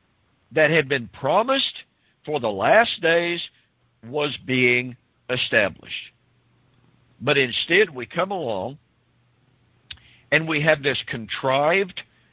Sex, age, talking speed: male, 50-69, 100 wpm